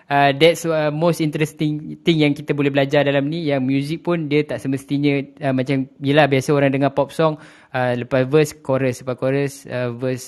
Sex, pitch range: male, 140-165 Hz